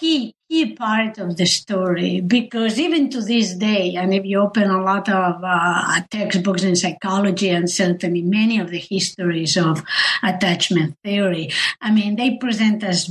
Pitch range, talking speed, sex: 190-235 Hz, 165 wpm, female